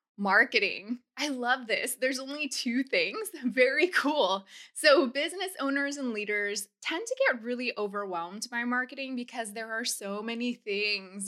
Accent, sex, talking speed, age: American, female, 150 wpm, 20-39